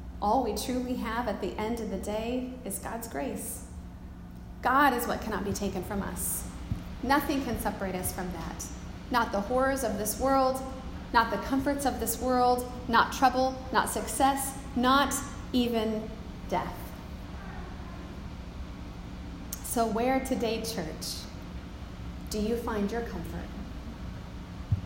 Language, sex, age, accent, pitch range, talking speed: English, female, 30-49, American, 205-255 Hz, 135 wpm